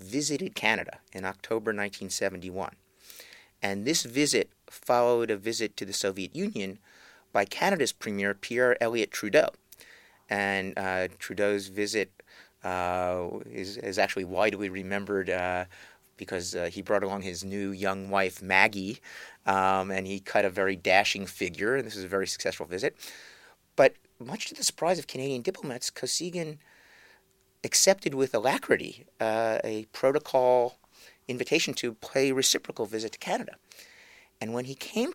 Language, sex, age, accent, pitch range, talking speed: English, male, 30-49, American, 95-125 Hz, 145 wpm